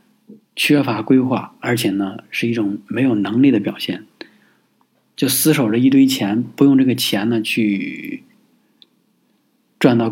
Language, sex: Chinese, male